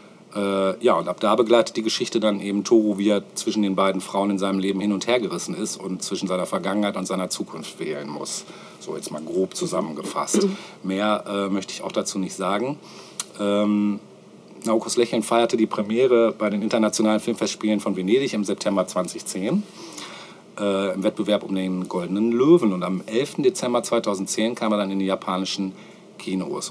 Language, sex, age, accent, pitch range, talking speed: German, male, 50-69, German, 95-115 Hz, 180 wpm